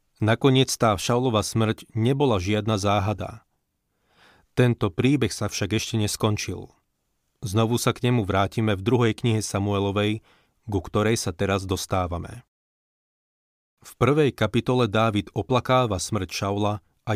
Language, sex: Slovak, male